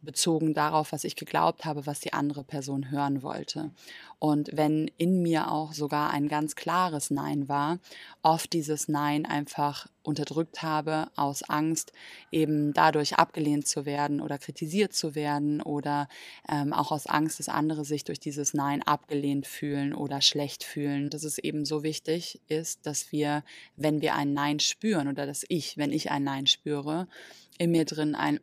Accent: German